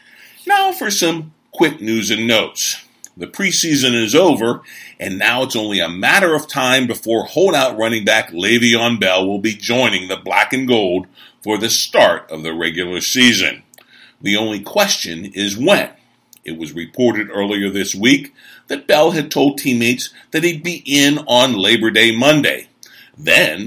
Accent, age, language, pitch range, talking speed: American, 50-69, English, 105-145 Hz, 160 wpm